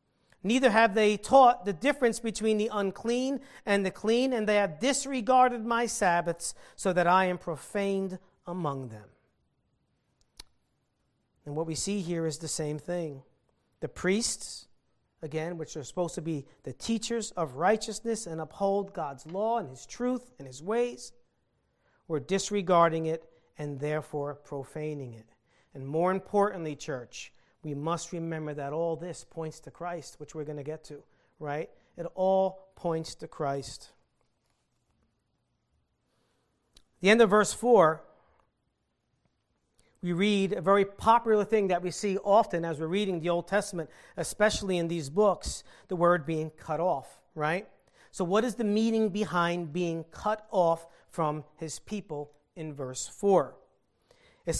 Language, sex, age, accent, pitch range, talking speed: English, male, 40-59, American, 155-210 Hz, 150 wpm